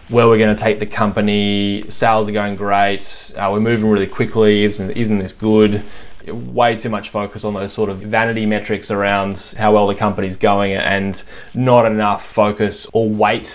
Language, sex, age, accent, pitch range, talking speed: English, male, 20-39, Australian, 100-110 Hz, 180 wpm